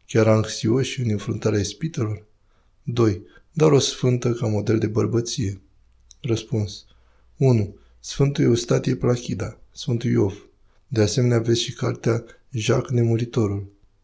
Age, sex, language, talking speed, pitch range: 20-39, male, Romanian, 115 wpm, 100-120 Hz